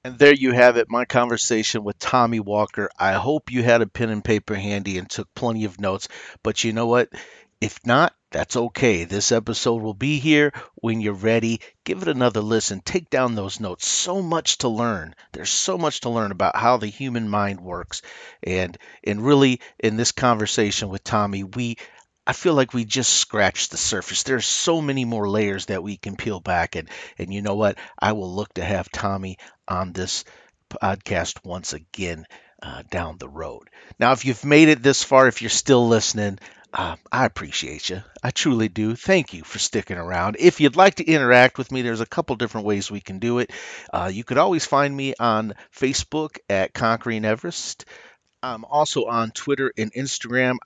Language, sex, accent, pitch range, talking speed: English, male, American, 100-130 Hz, 200 wpm